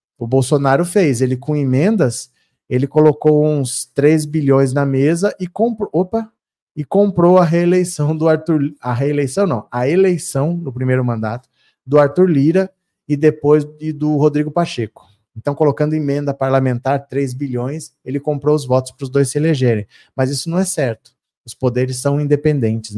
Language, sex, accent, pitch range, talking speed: Portuguese, male, Brazilian, 130-170 Hz, 155 wpm